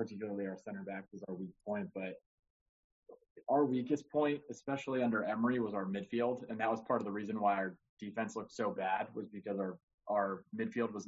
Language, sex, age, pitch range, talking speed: English, male, 20-39, 100-120 Hz, 200 wpm